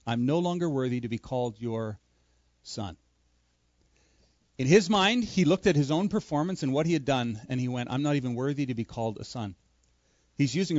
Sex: male